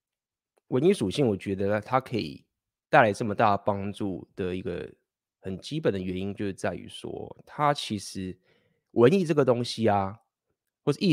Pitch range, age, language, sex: 95-135 Hz, 20-39, Chinese, male